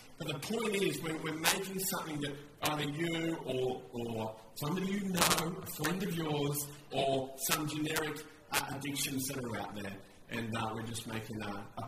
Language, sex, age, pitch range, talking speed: English, male, 40-59, 125-170 Hz, 180 wpm